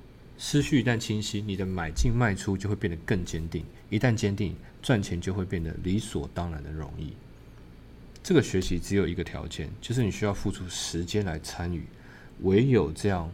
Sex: male